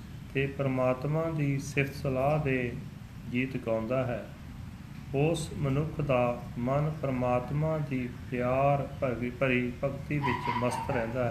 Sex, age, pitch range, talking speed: male, 40-59, 120-140 Hz, 115 wpm